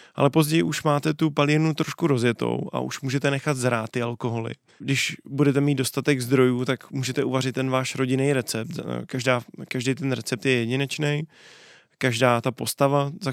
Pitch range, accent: 125-140 Hz, native